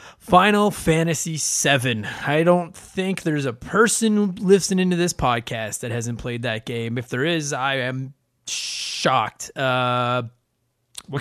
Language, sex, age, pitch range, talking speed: English, male, 20-39, 125-165 Hz, 140 wpm